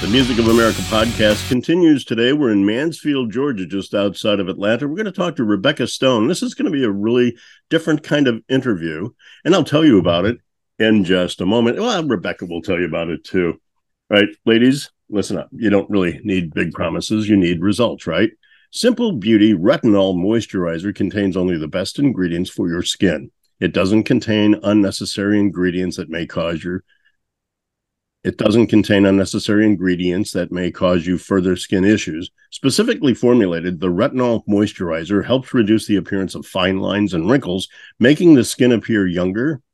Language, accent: English, American